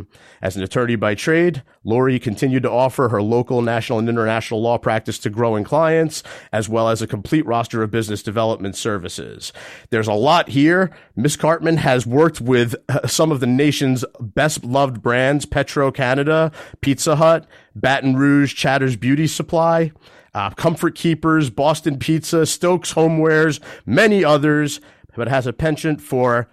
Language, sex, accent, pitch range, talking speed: English, male, American, 115-155 Hz, 150 wpm